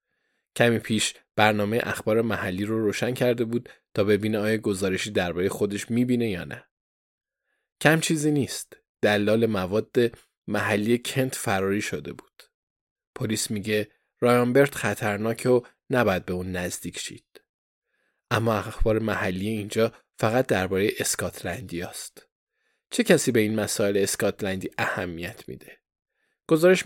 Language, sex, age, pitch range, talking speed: Persian, male, 20-39, 105-130 Hz, 125 wpm